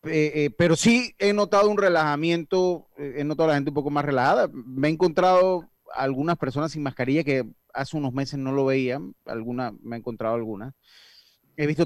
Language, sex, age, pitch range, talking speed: Spanish, male, 30-49, 115-155 Hz, 195 wpm